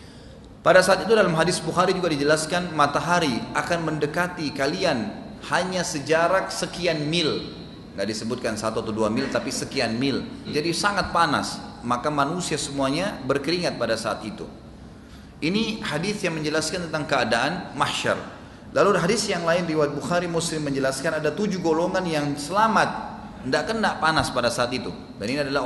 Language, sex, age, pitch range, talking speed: Indonesian, male, 30-49, 130-165 Hz, 150 wpm